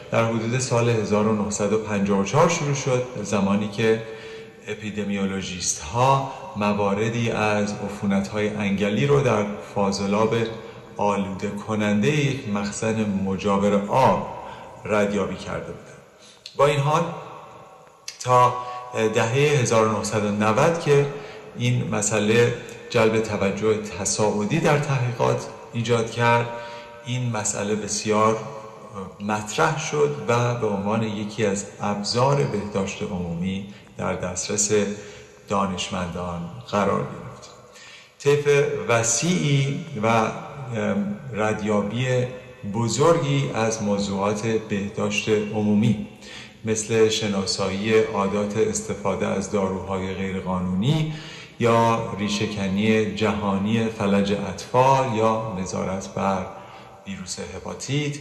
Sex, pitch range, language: male, 100-120 Hz, Persian